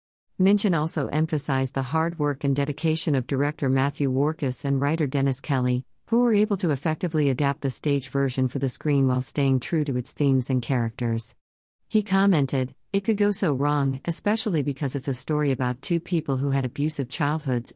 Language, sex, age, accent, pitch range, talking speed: English, female, 50-69, American, 130-160 Hz, 185 wpm